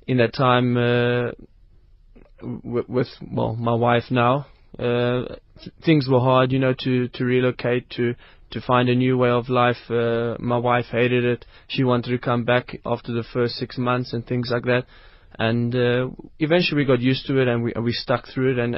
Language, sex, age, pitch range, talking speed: English, male, 20-39, 120-135 Hz, 200 wpm